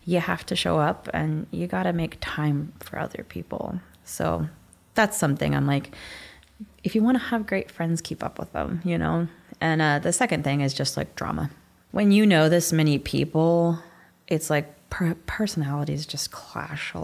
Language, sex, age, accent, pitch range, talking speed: English, female, 20-39, American, 140-165 Hz, 185 wpm